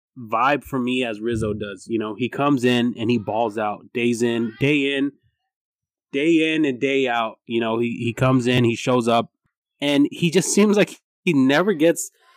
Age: 20-39